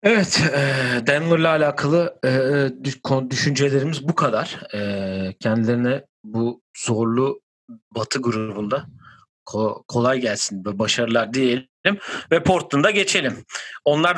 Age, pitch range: 40-59, 120-165 Hz